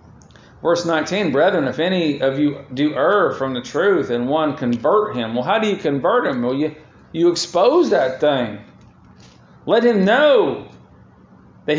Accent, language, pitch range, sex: American, English, 135-185 Hz, male